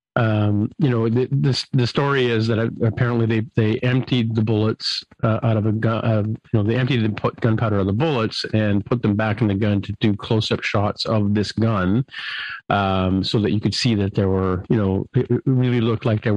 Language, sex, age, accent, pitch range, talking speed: English, male, 40-59, American, 100-115 Hz, 225 wpm